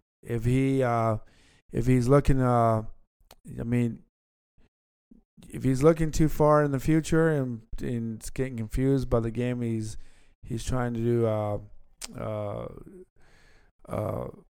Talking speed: 135 wpm